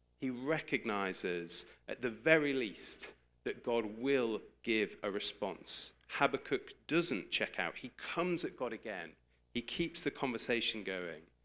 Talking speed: 135 wpm